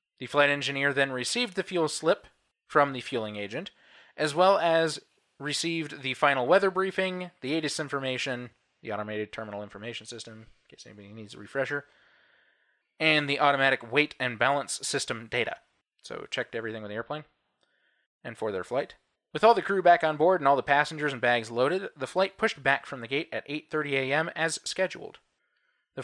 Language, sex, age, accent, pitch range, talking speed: English, male, 20-39, American, 120-165 Hz, 180 wpm